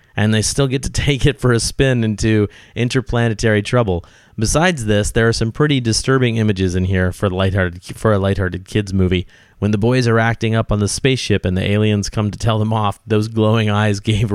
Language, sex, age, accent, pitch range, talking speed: English, male, 30-49, American, 100-120 Hz, 215 wpm